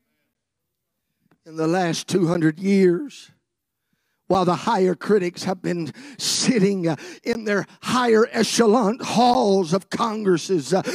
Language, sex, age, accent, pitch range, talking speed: English, male, 50-69, American, 180-265 Hz, 105 wpm